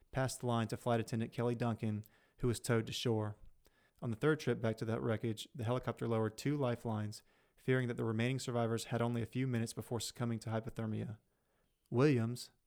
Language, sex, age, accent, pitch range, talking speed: English, male, 30-49, American, 115-125 Hz, 195 wpm